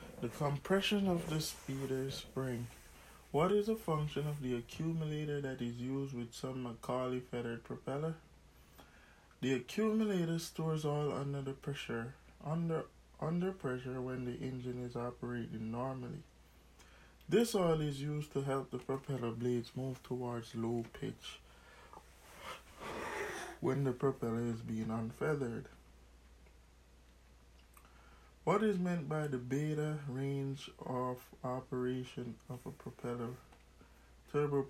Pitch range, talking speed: 115-145 Hz, 120 wpm